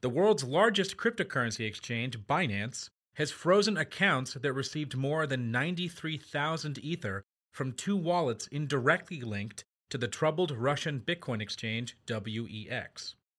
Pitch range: 115-150 Hz